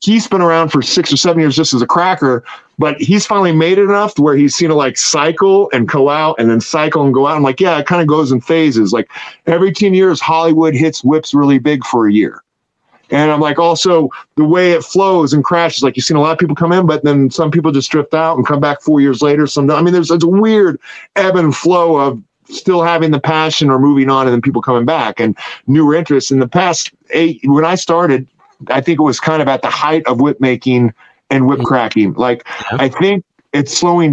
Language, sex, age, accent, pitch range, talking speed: English, male, 40-59, American, 140-165 Hz, 245 wpm